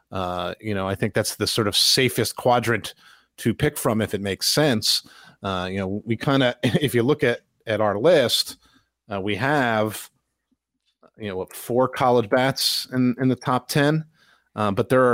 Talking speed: 185 wpm